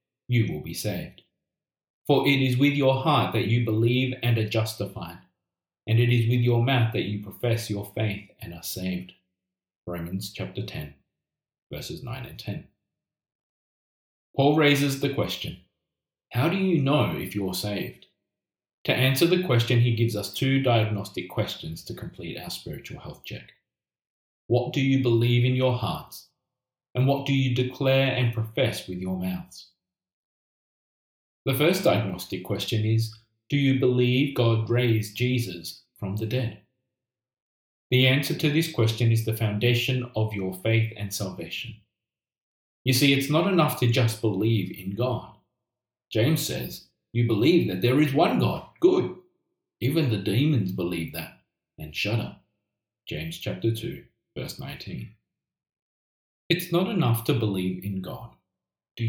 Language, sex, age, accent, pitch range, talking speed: English, male, 30-49, Australian, 100-130 Hz, 150 wpm